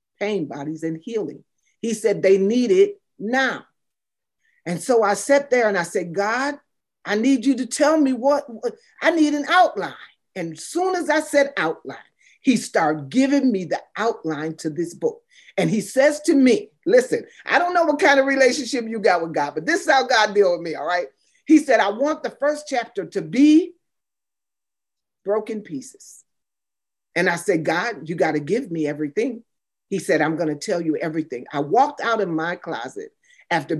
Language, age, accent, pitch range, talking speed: English, 40-59, American, 155-265 Hz, 190 wpm